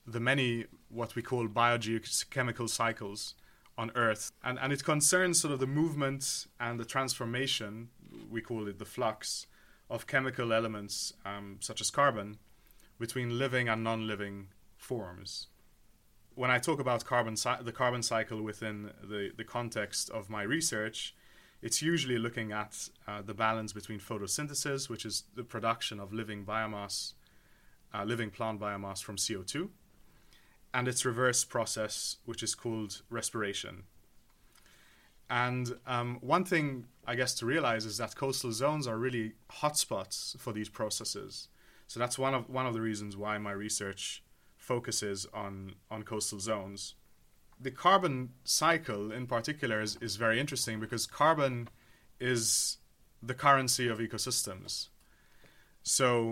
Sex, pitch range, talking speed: male, 105-125 Hz, 140 wpm